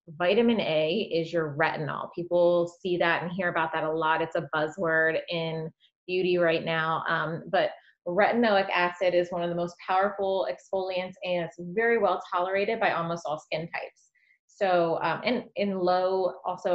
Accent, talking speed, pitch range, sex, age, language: American, 170 wpm, 165-185 Hz, female, 30-49, English